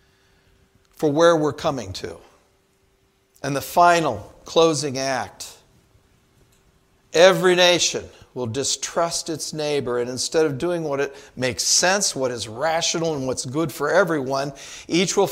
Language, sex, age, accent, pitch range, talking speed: English, male, 50-69, American, 135-180 Hz, 135 wpm